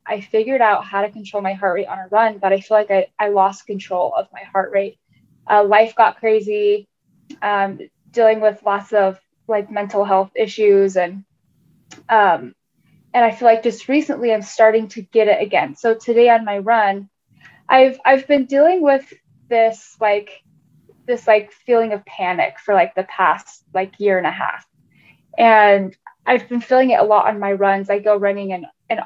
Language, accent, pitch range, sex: English, American, 195-235 Hz, female